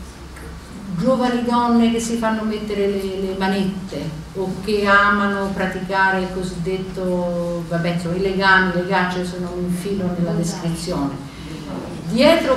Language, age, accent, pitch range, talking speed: Italian, 50-69, native, 170-215 Hz, 125 wpm